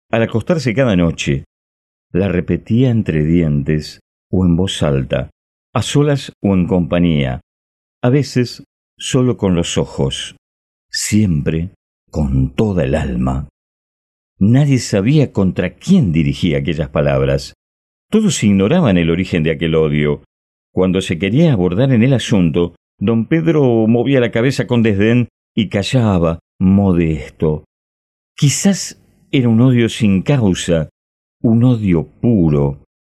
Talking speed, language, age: 125 wpm, Spanish, 50-69